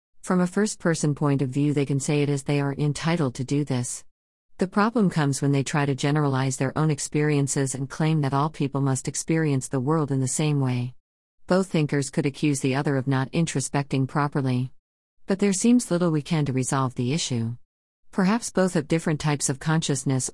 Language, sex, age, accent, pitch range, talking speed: English, female, 40-59, American, 130-160 Hz, 200 wpm